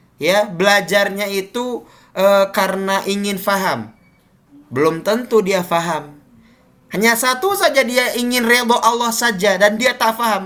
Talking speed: 130 wpm